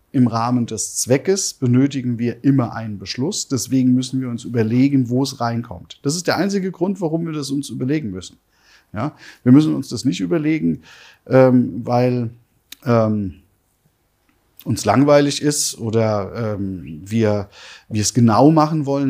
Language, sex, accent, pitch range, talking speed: German, male, German, 115-140 Hz, 150 wpm